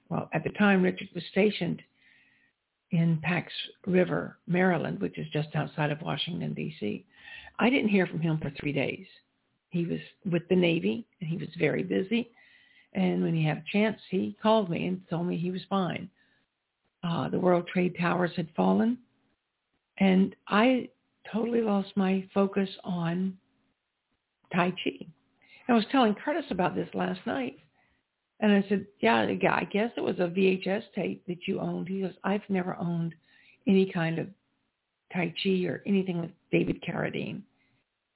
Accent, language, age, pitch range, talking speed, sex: American, English, 60-79, 170-205 Hz, 165 wpm, female